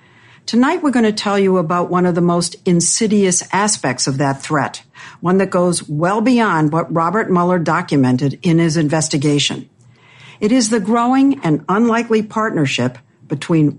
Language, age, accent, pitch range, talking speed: English, 60-79, American, 150-205 Hz, 155 wpm